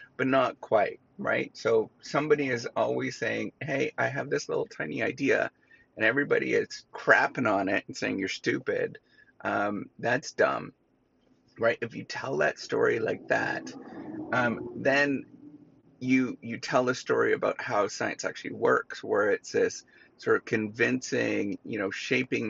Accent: American